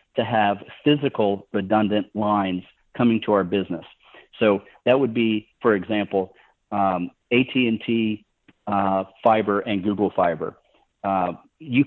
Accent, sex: American, male